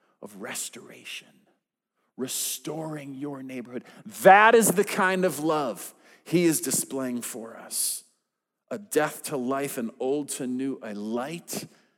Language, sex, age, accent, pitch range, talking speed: English, male, 40-59, American, 135-220 Hz, 130 wpm